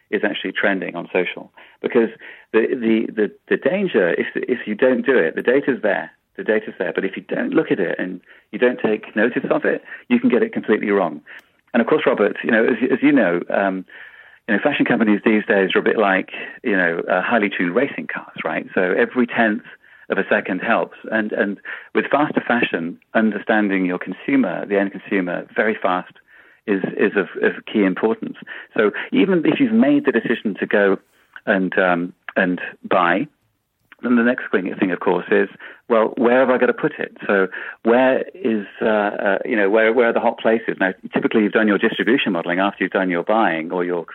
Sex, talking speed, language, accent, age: male, 210 wpm, English, British, 40-59